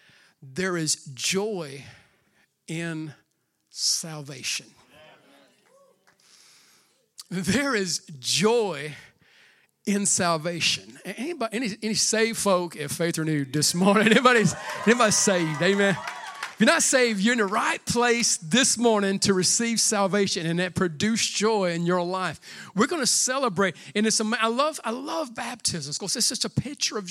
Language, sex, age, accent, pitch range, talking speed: English, male, 50-69, American, 180-235 Hz, 140 wpm